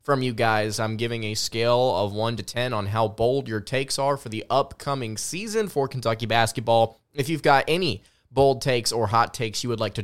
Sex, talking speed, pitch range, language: male, 220 wpm, 110-145 Hz, English